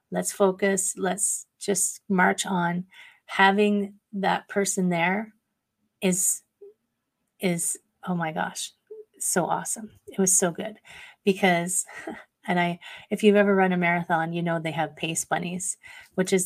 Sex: female